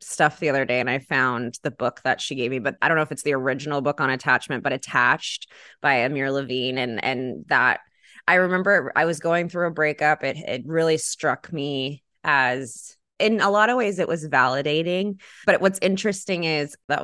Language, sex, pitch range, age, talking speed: English, female, 140-175 Hz, 20-39, 210 wpm